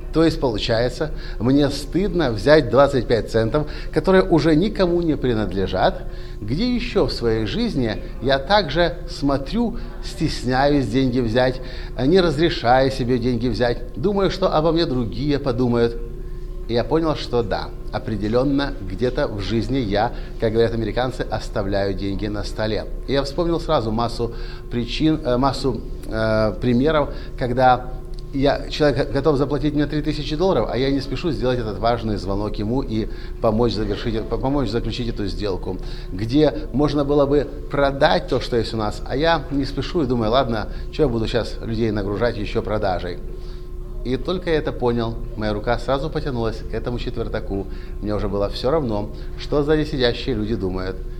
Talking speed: 155 wpm